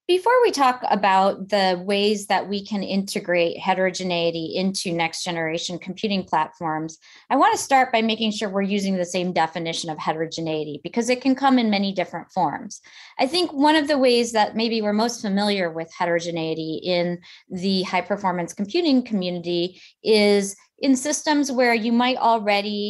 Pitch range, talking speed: 180-230 Hz, 160 wpm